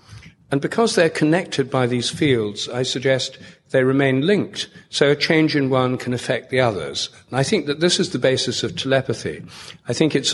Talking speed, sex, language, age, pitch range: 195 wpm, male, English, 50-69, 115-145 Hz